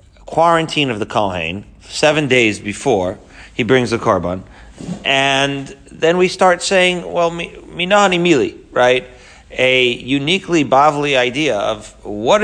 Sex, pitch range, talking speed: male, 120-165 Hz, 130 wpm